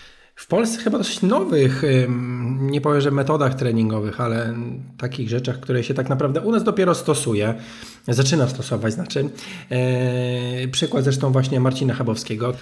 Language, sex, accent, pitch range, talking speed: Polish, male, native, 120-140 Hz, 140 wpm